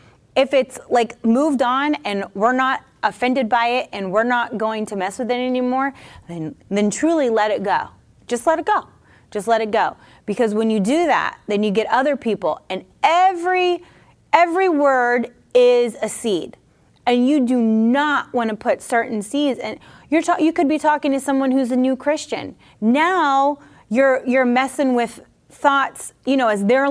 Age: 30-49